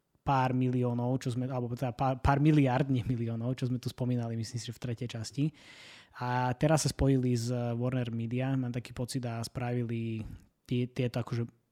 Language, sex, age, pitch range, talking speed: Slovak, male, 20-39, 120-140 Hz, 180 wpm